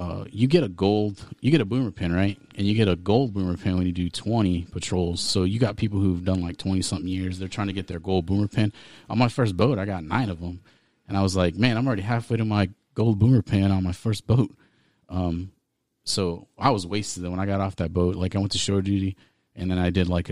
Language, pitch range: English, 90-110 Hz